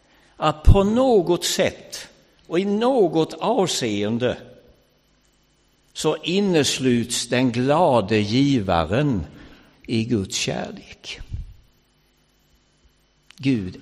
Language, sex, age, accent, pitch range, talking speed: English, male, 60-79, Swedish, 110-175 Hz, 75 wpm